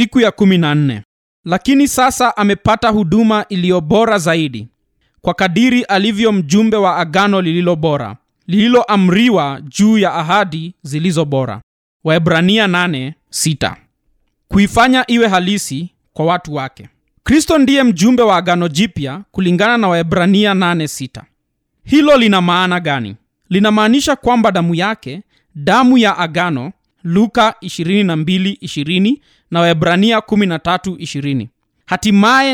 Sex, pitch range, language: male, 170-225 Hz, Swahili